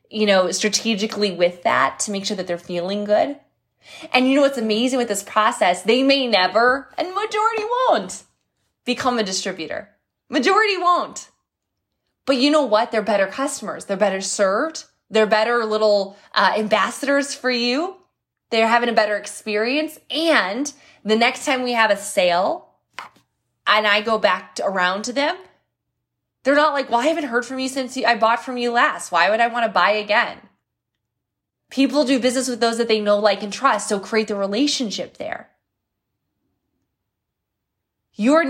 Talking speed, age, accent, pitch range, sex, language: 165 wpm, 20-39, American, 210-280 Hz, female, English